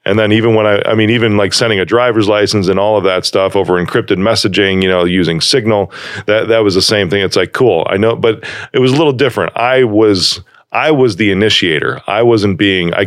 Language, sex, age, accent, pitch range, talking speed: English, male, 40-59, American, 95-115 Hz, 240 wpm